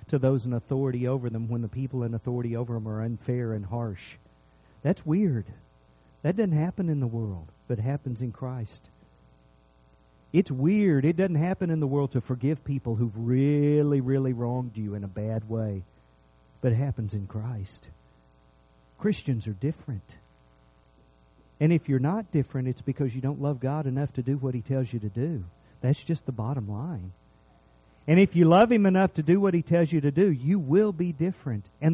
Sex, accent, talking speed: male, American, 190 wpm